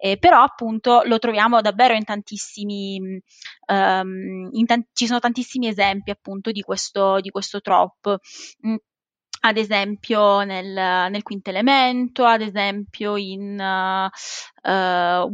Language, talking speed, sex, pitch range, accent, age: Italian, 125 wpm, female, 195-235 Hz, native, 20-39